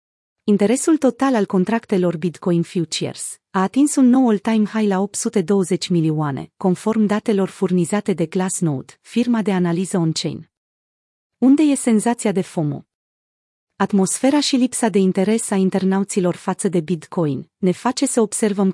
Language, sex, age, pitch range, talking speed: Romanian, female, 30-49, 180-220 Hz, 140 wpm